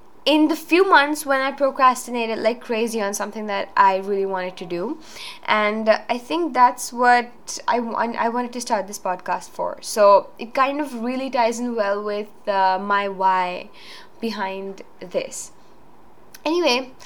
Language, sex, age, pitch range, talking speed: English, female, 10-29, 205-280 Hz, 160 wpm